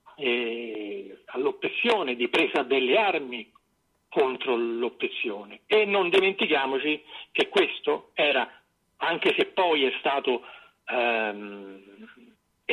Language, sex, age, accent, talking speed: Italian, male, 50-69, native, 90 wpm